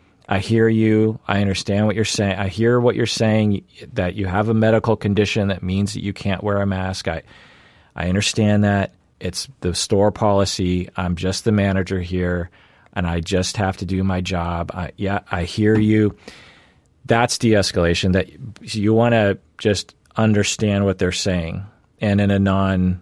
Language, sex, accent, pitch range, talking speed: English, male, American, 90-110 Hz, 175 wpm